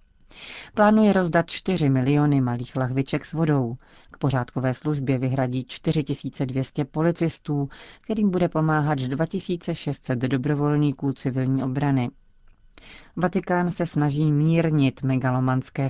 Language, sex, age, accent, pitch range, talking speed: Czech, female, 40-59, native, 130-160 Hz, 100 wpm